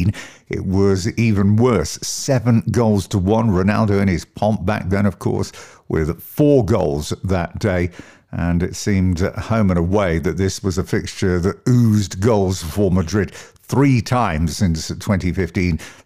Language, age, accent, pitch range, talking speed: English, 50-69, British, 85-105 Hz, 155 wpm